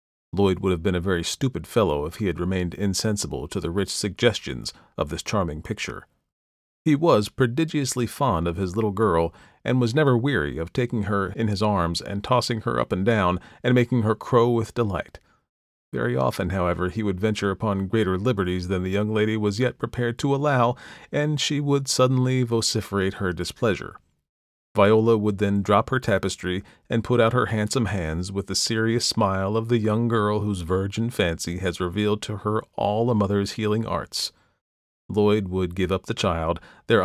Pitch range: 90-115 Hz